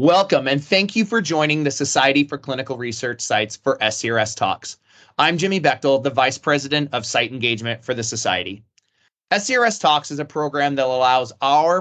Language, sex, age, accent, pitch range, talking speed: English, male, 30-49, American, 130-165 Hz, 180 wpm